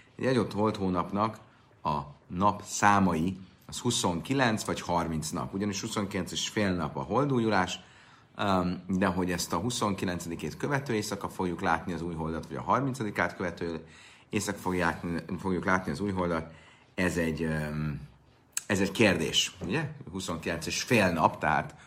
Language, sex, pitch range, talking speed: Hungarian, male, 85-130 Hz, 145 wpm